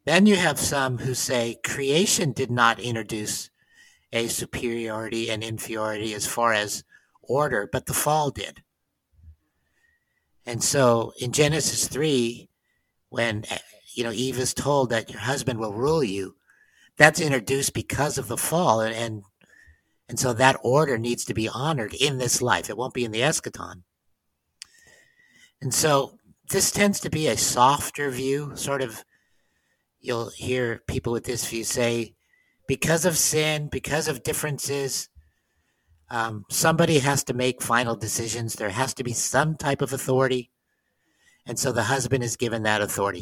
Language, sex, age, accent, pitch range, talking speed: English, male, 50-69, American, 110-140 Hz, 155 wpm